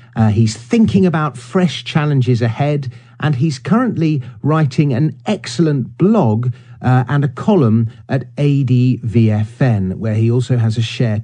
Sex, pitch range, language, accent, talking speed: male, 120-145 Hz, English, British, 140 wpm